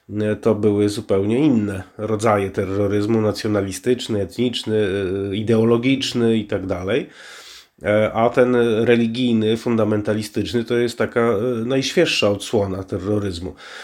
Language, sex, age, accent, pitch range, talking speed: Polish, male, 30-49, native, 105-120 Hz, 95 wpm